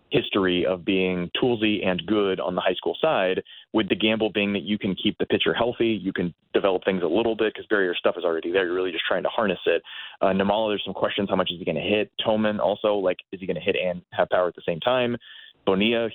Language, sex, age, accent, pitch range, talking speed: English, male, 20-39, American, 95-115 Hz, 260 wpm